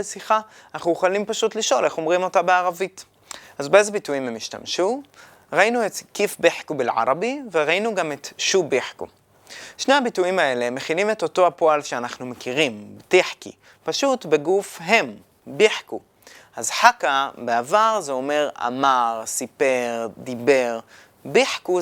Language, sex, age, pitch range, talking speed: Hebrew, male, 20-39, 140-220 Hz, 130 wpm